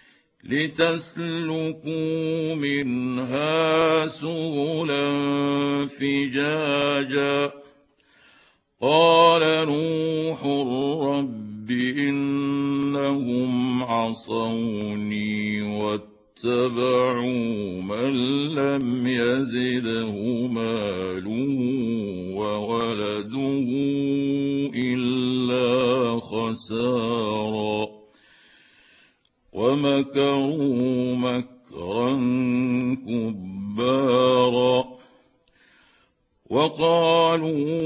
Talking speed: 30 wpm